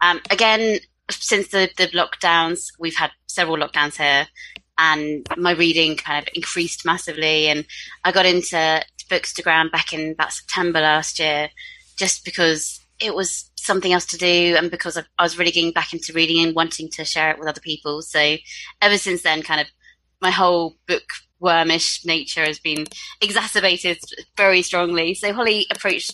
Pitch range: 155-190 Hz